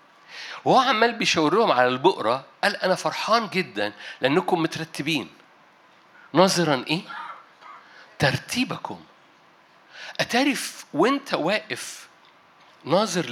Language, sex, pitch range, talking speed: Arabic, male, 155-205 Hz, 80 wpm